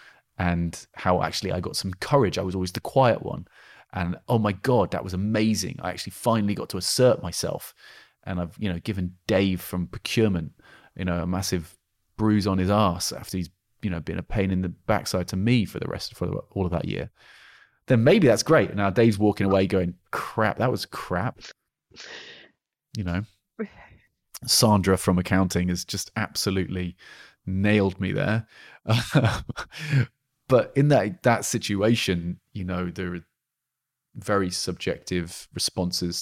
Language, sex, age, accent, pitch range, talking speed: English, male, 30-49, British, 90-110 Hz, 170 wpm